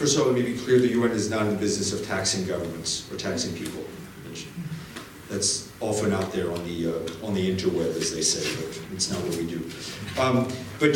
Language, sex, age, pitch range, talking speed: English, male, 40-59, 100-125 Hz, 225 wpm